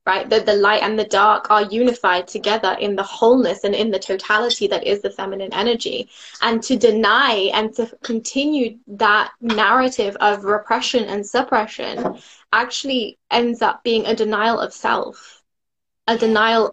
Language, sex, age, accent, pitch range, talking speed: English, female, 10-29, British, 210-240 Hz, 160 wpm